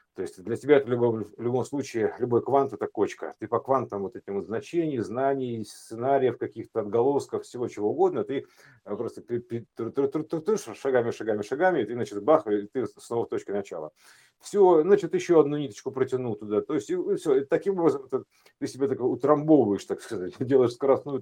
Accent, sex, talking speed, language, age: native, male, 175 wpm, Russian, 50-69